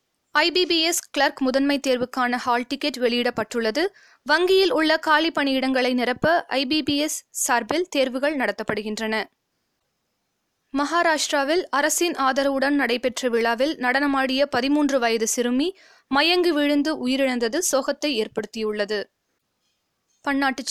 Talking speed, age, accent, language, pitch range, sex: 100 wpm, 20-39, native, Tamil, 250-315 Hz, female